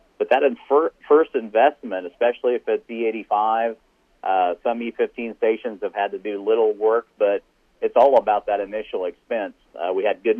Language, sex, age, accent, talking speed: English, male, 40-59, American, 180 wpm